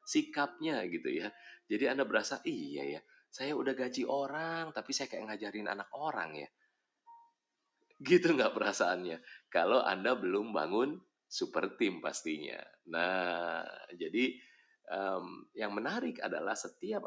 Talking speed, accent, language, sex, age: 125 wpm, native, Indonesian, male, 30-49